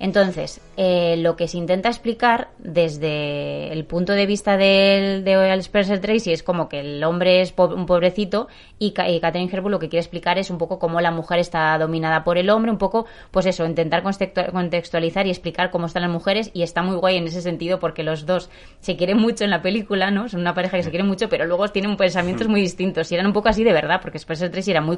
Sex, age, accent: female, 20-39, Spanish